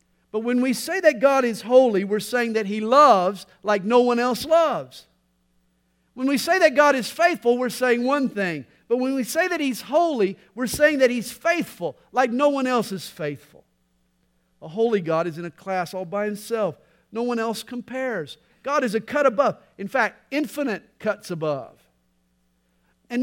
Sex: male